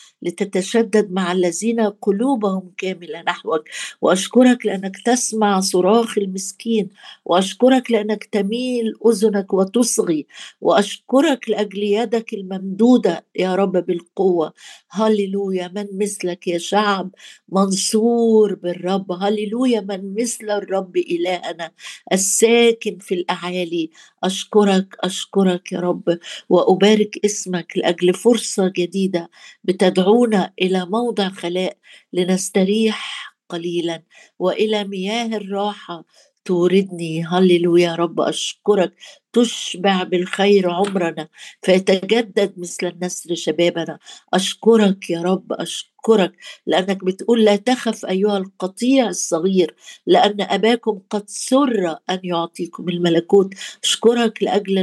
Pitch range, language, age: 180-220 Hz, Arabic, 50-69